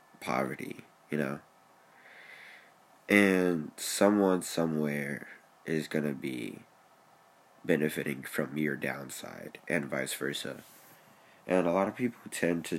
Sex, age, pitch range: male, 20-39, 75-90 Hz